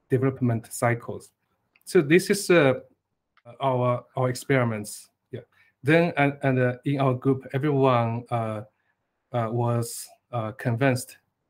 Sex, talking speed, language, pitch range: male, 120 wpm, English, 120-140 Hz